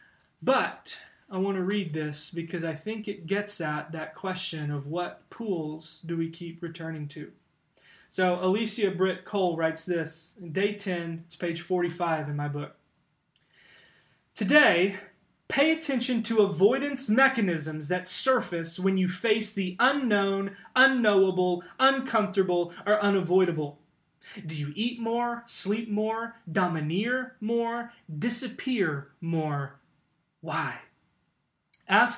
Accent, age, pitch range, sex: American, 20-39, 160-210 Hz, male